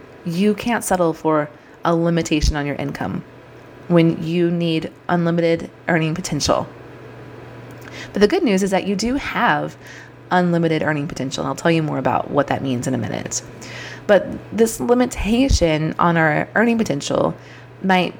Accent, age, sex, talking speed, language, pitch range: American, 20-39, female, 150 wpm, English, 155-185 Hz